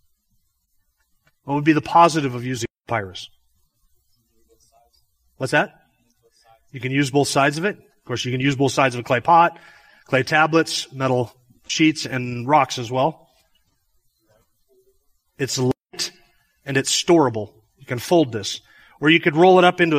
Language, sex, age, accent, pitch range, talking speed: English, male, 30-49, American, 115-150 Hz, 155 wpm